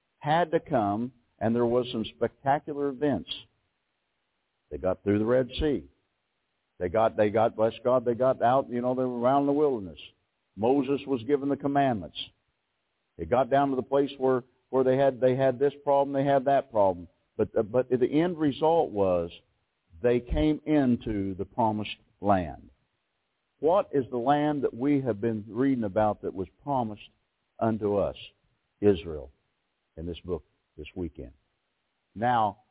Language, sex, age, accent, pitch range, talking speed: English, male, 60-79, American, 100-135 Hz, 165 wpm